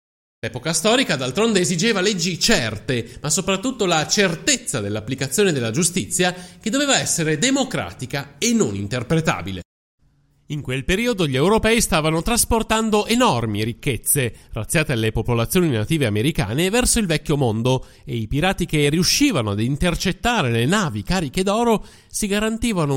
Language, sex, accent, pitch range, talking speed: Italian, male, native, 120-205 Hz, 135 wpm